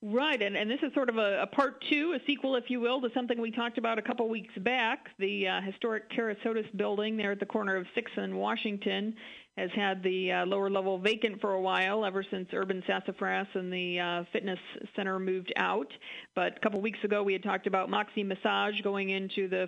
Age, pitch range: 40-59, 190-215 Hz